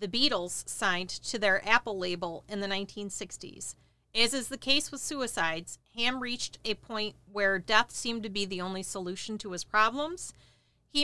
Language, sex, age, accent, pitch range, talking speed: English, female, 40-59, American, 195-245 Hz, 175 wpm